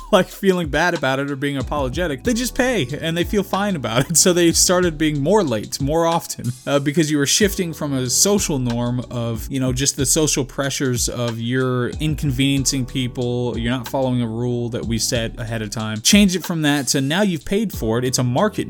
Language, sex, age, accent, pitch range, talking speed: English, male, 20-39, American, 120-165 Hz, 220 wpm